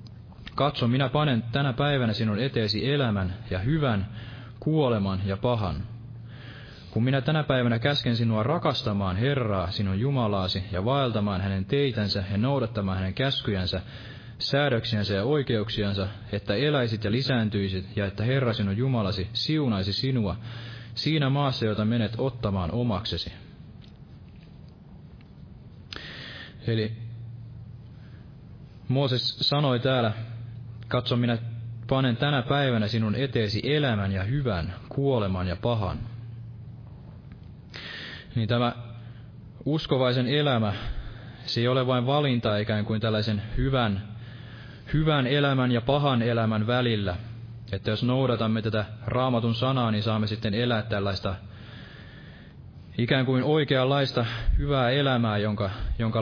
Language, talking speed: Finnish, 110 wpm